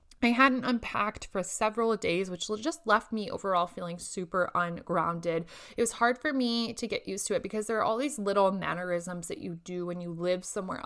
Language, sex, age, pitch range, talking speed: English, female, 20-39, 180-235 Hz, 210 wpm